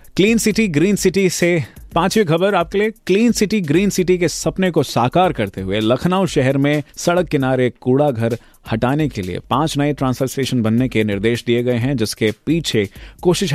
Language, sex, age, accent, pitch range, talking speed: Hindi, male, 30-49, native, 115-155 Hz, 185 wpm